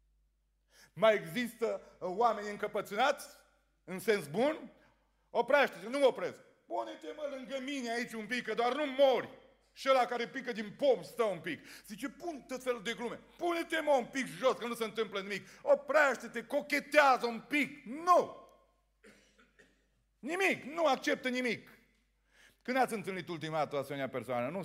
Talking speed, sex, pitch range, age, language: 150 wpm, male, 175-255 Hz, 40-59, Romanian